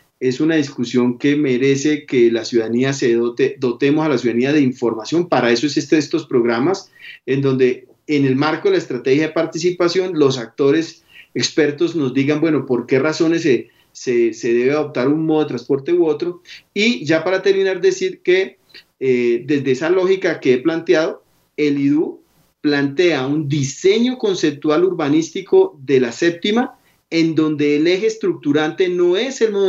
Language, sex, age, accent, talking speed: Spanish, male, 40-59, Colombian, 170 wpm